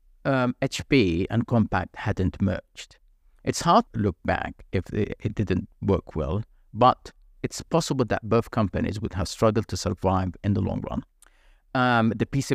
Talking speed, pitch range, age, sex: 165 wpm, 95-115 Hz, 50-69, male